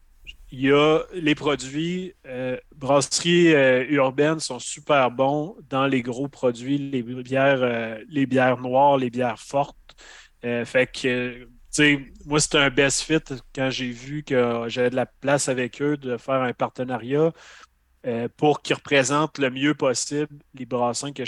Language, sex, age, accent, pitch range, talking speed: French, male, 30-49, Canadian, 125-145 Hz, 160 wpm